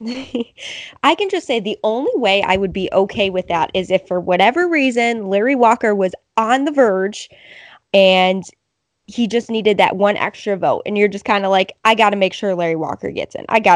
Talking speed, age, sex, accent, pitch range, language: 215 wpm, 20-39, female, American, 195-255 Hz, English